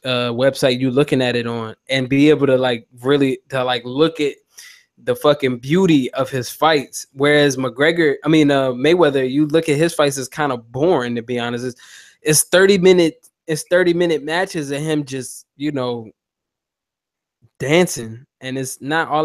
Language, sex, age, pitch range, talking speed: English, male, 10-29, 130-160 Hz, 185 wpm